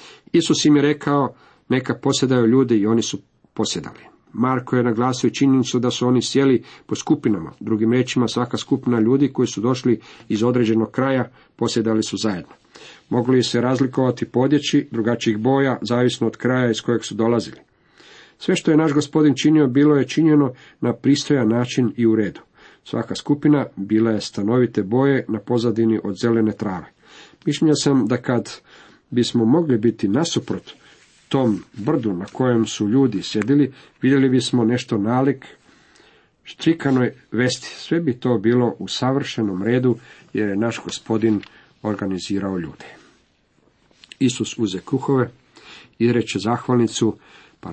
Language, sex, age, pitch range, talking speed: Croatian, male, 50-69, 110-135 Hz, 145 wpm